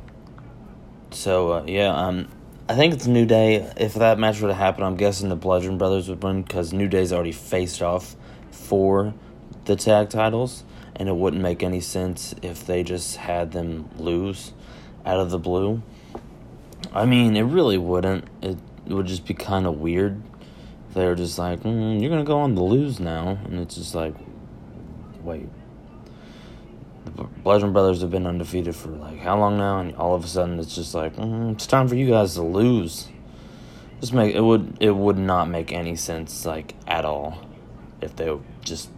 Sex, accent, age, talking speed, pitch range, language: male, American, 30-49, 190 wpm, 85-105 Hz, English